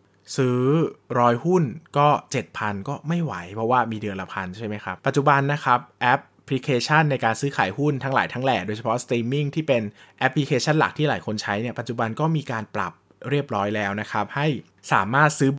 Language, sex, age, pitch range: Thai, male, 20-39, 115-150 Hz